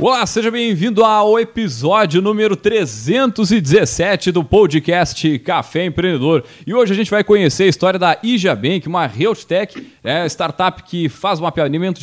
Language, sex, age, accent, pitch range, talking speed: Portuguese, male, 30-49, Brazilian, 160-205 Hz, 145 wpm